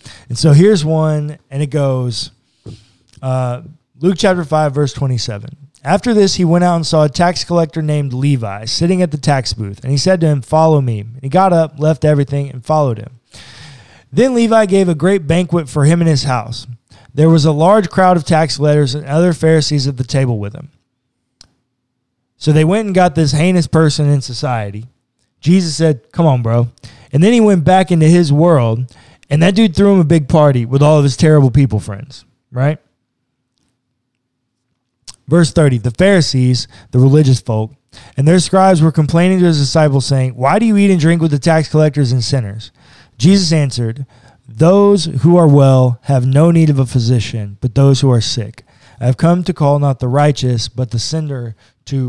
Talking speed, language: 190 wpm, English